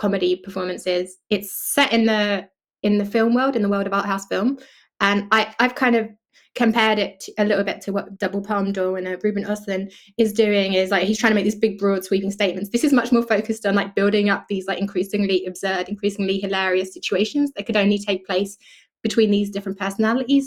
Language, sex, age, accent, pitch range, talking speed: English, female, 20-39, British, 195-225 Hz, 215 wpm